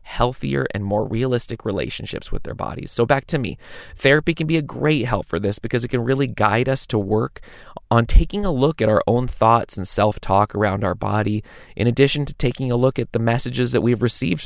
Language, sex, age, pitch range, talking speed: English, male, 20-39, 105-130 Hz, 220 wpm